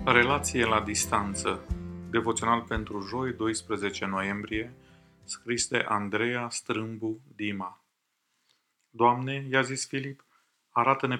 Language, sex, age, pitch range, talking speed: Romanian, male, 30-49, 110-125 Hz, 95 wpm